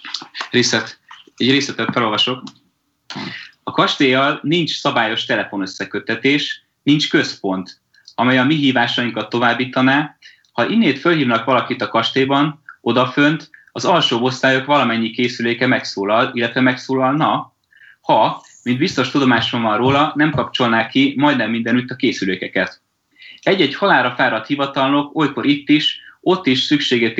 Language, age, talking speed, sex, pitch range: Hungarian, 30-49, 120 wpm, male, 115-140 Hz